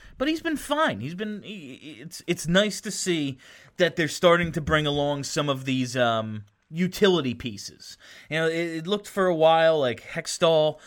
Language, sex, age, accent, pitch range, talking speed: English, male, 30-49, American, 135-180 Hz, 190 wpm